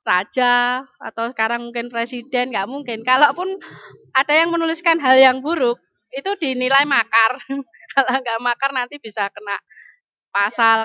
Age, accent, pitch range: 20-39, native, 220-270 Hz